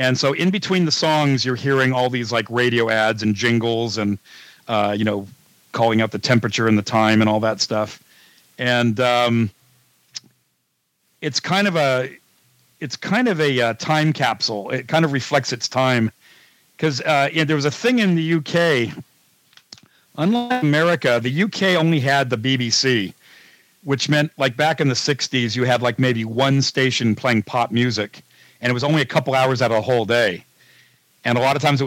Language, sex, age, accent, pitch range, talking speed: English, male, 50-69, American, 115-150 Hz, 190 wpm